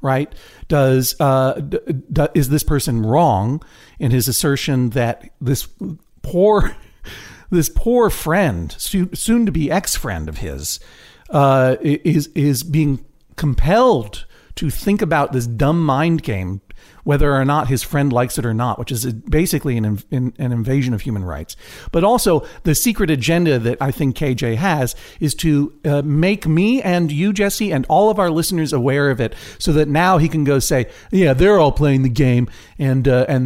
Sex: male